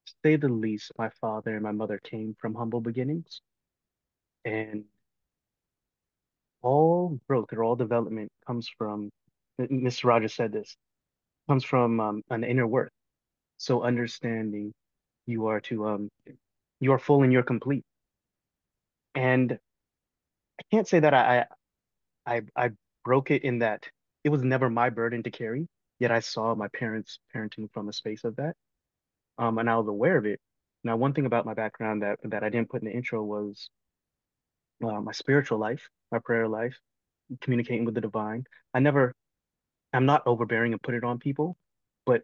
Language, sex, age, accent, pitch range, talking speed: English, male, 30-49, American, 110-125 Hz, 170 wpm